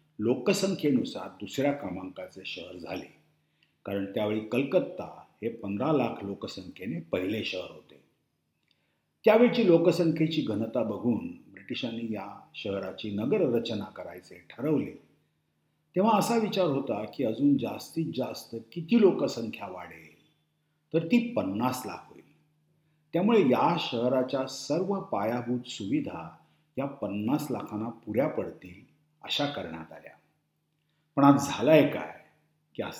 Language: Marathi